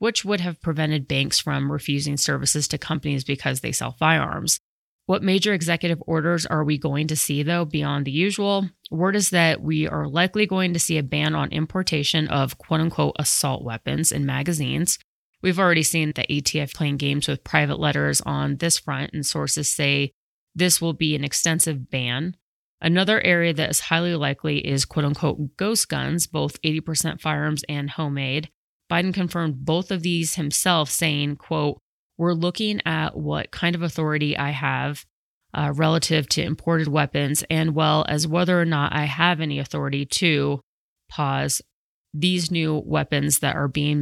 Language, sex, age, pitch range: English, female, 30-49, 145-170 Hz